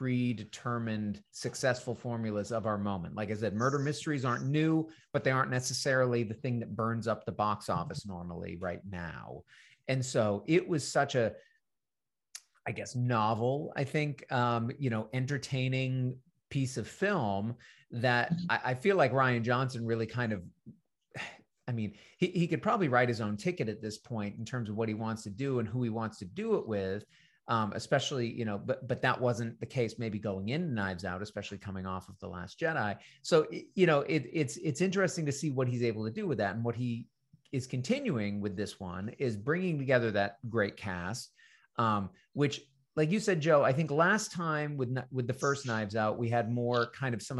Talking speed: 200 wpm